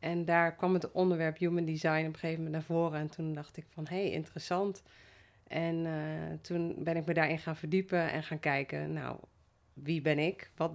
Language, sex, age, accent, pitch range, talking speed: Dutch, female, 30-49, Dutch, 140-180 Hz, 210 wpm